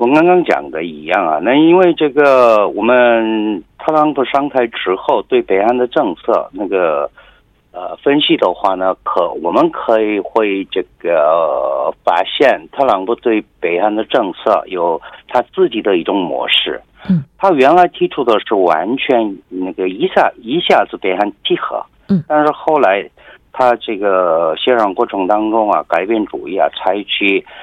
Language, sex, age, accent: Korean, male, 50-69, Chinese